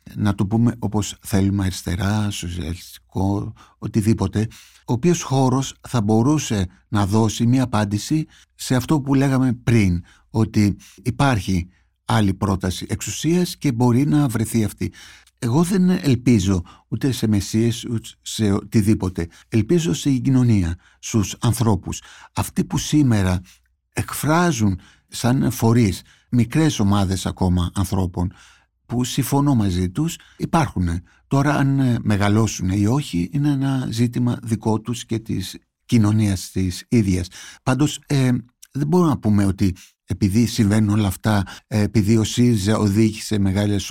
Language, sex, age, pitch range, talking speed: Greek, male, 60-79, 95-125 Hz, 125 wpm